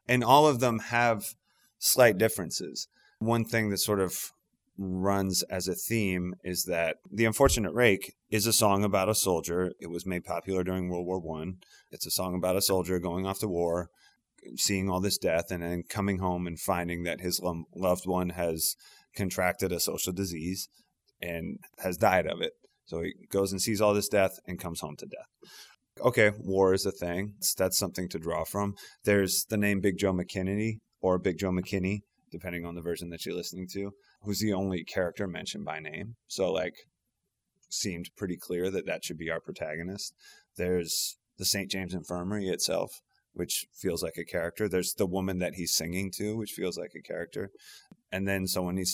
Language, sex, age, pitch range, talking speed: English, male, 30-49, 90-105 Hz, 190 wpm